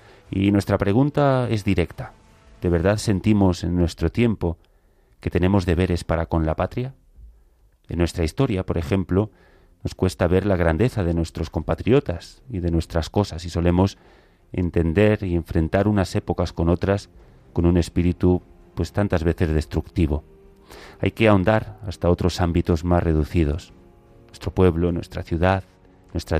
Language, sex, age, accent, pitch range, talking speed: Spanish, male, 30-49, Spanish, 85-100 Hz, 145 wpm